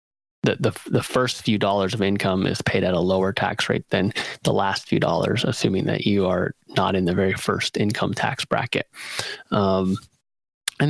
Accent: American